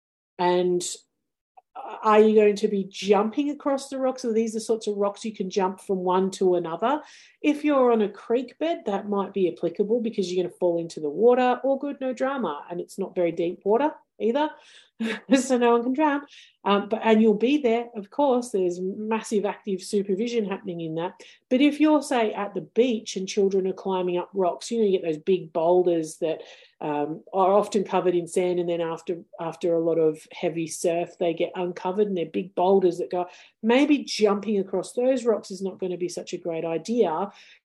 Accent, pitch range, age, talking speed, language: Australian, 180-225 Hz, 40-59, 210 wpm, English